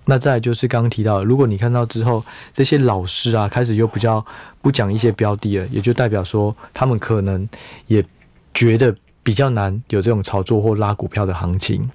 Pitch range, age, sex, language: 100-125 Hz, 20-39, male, Chinese